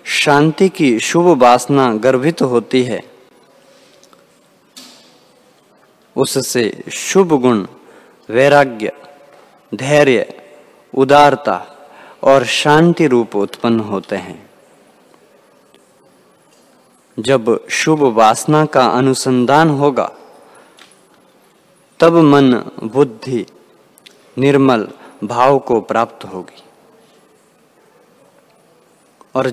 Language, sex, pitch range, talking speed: Hindi, male, 120-155 Hz, 70 wpm